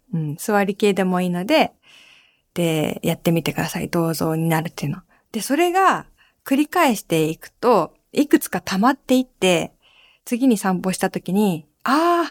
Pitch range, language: 190-290 Hz, Japanese